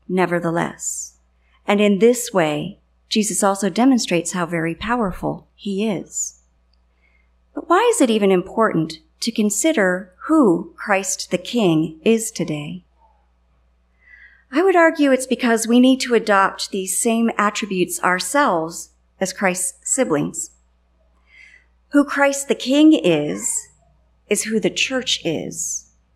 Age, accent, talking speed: 40-59, American, 120 wpm